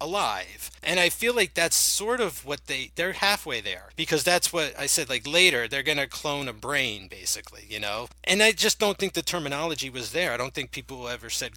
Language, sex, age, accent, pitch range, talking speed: English, male, 30-49, American, 115-165 Hz, 230 wpm